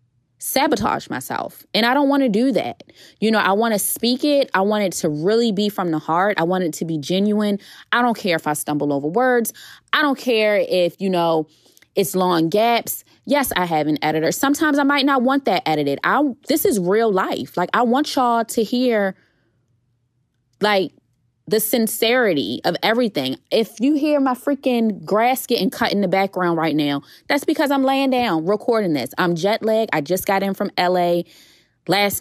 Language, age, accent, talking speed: English, 20-39, American, 195 wpm